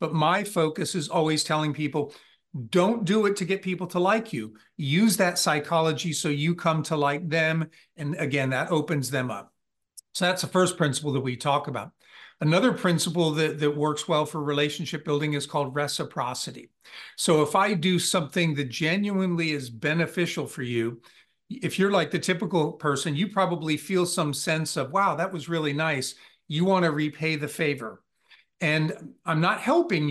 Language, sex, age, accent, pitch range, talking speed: English, male, 50-69, American, 150-180 Hz, 180 wpm